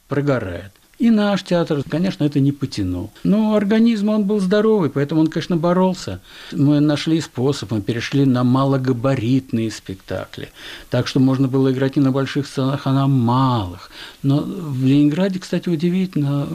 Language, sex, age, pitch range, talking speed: Russian, male, 50-69, 120-180 Hz, 150 wpm